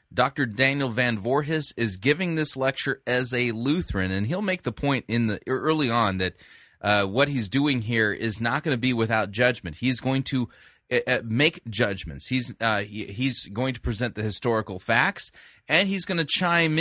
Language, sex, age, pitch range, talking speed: English, male, 20-39, 110-140 Hz, 190 wpm